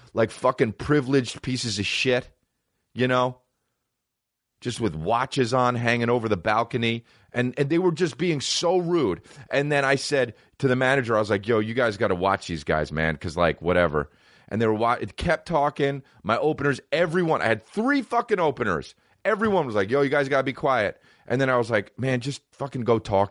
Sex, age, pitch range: male, 30-49, 100-140 Hz